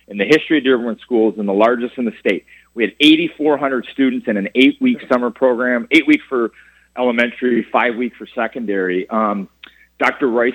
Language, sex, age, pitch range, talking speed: Arabic, male, 30-49, 110-135 Hz, 180 wpm